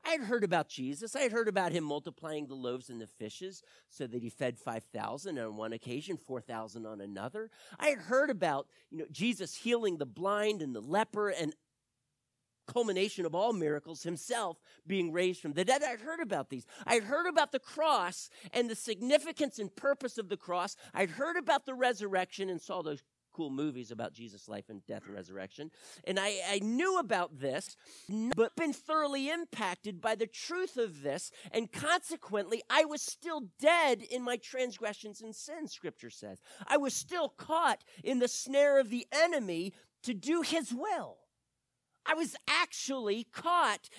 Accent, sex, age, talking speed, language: American, male, 40-59, 180 wpm, English